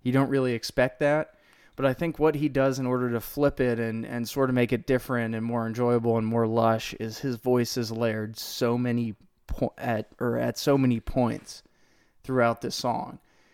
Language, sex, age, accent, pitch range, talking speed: English, male, 20-39, American, 115-135 Hz, 205 wpm